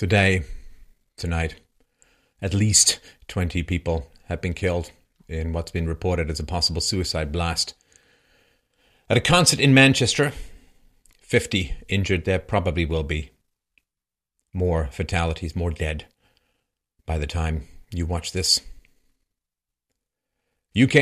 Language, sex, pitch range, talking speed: English, male, 80-95 Hz, 115 wpm